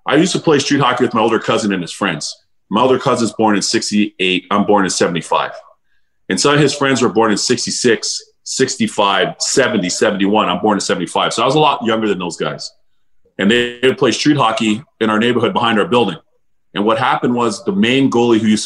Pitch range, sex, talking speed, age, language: 115-155 Hz, male, 220 wpm, 40-59, English